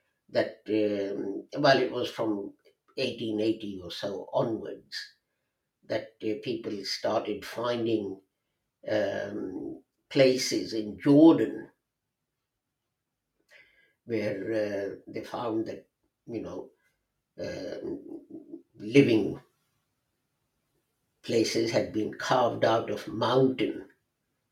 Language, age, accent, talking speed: English, 60-79, Indian, 85 wpm